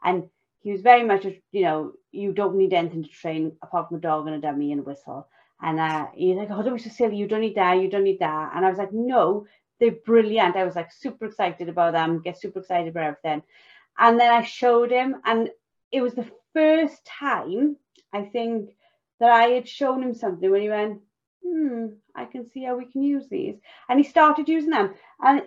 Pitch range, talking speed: 190-275 Hz, 230 wpm